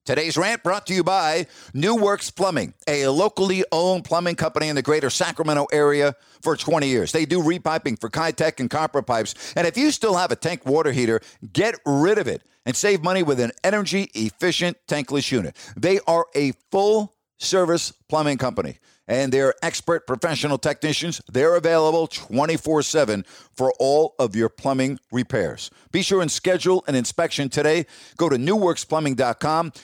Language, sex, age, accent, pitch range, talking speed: English, male, 50-69, American, 145-190 Hz, 170 wpm